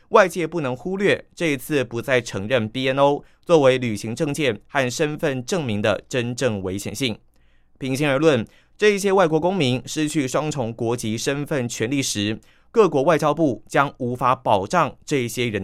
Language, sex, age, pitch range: Chinese, male, 30-49, 115-155 Hz